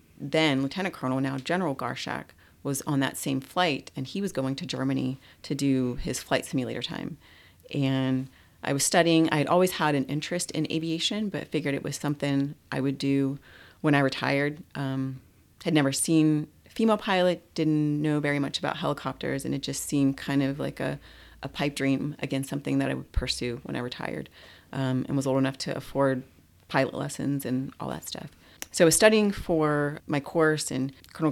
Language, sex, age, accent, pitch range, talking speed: English, female, 30-49, American, 135-155 Hz, 190 wpm